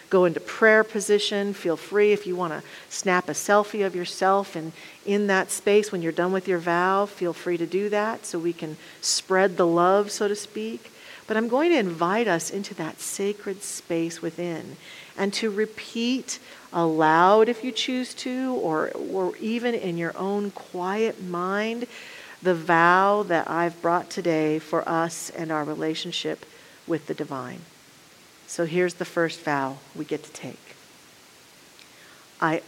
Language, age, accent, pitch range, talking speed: English, 40-59, American, 165-205 Hz, 165 wpm